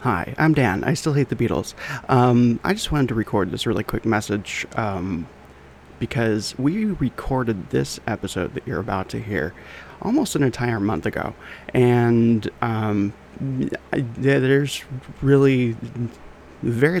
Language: English